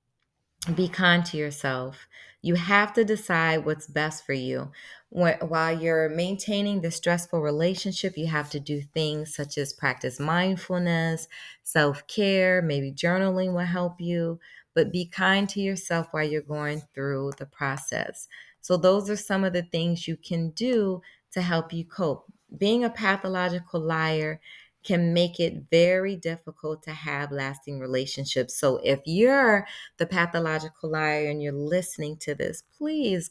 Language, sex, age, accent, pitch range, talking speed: English, female, 30-49, American, 150-190 Hz, 150 wpm